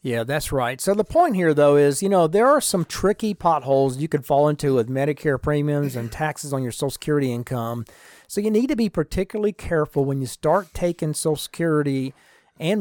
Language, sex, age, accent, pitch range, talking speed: English, male, 40-59, American, 125-160 Hz, 205 wpm